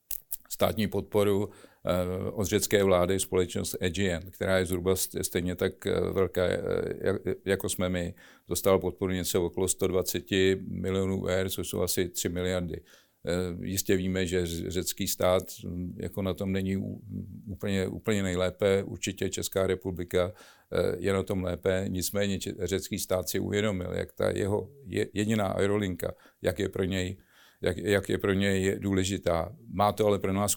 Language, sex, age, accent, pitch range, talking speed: Czech, male, 50-69, native, 90-100 Hz, 140 wpm